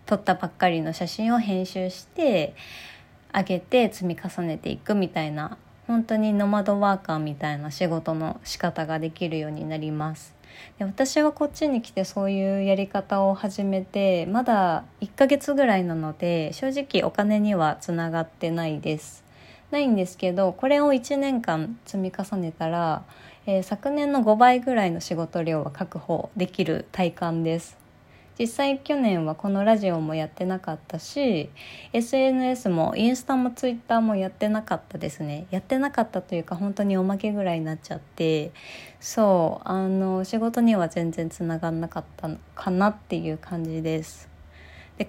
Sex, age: female, 20-39